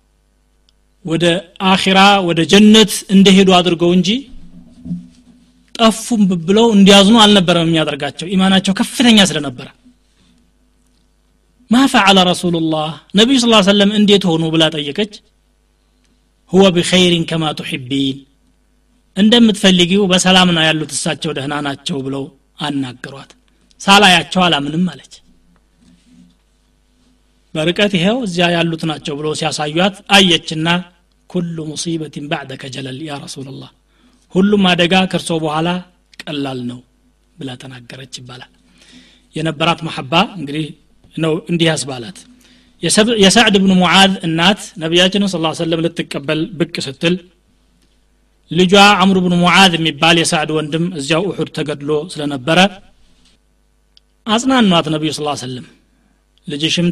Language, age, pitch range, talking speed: Amharic, 30-49, 150-195 Hz, 85 wpm